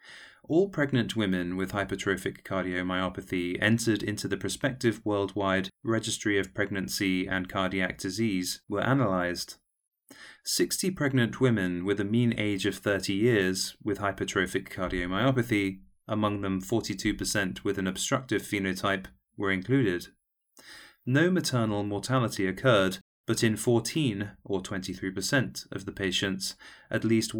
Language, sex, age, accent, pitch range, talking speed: English, male, 30-49, British, 95-115 Hz, 120 wpm